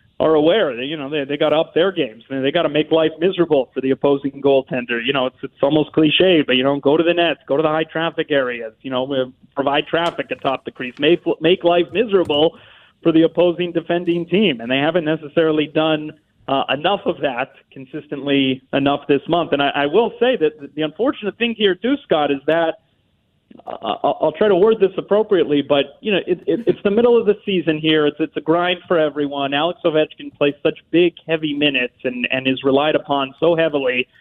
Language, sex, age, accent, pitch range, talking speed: English, male, 40-59, American, 145-190 Hz, 210 wpm